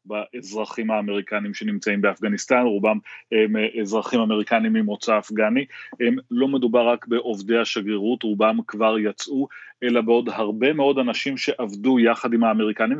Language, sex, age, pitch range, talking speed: Hebrew, male, 30-49, 110-135 Hz, 130 wpm